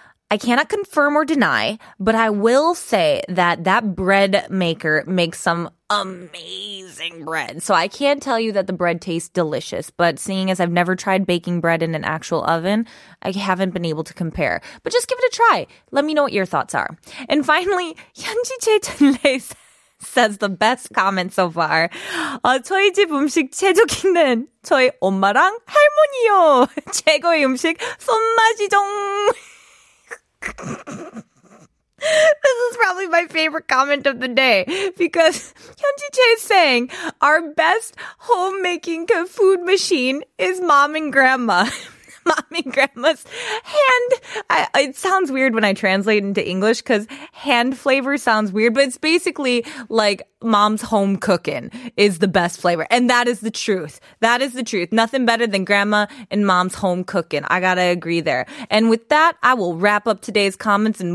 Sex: female